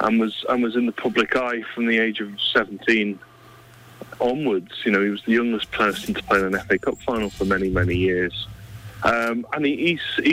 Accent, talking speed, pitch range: British, 210 wpm, 105-125 Hz